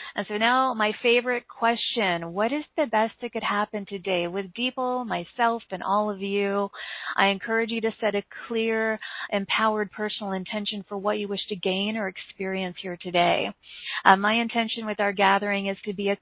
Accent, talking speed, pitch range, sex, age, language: American, 190 wpm, 195-230 Hz, female, 40-59, English